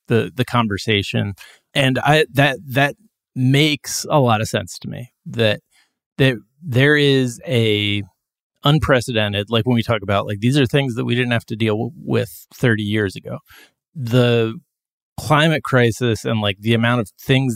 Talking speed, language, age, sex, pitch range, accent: 165 wpm, English, 30-49, male, 105-130 Hz, American